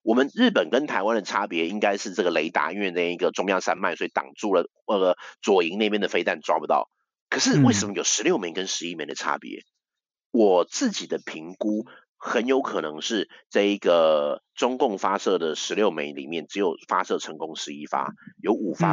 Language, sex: Chinese, male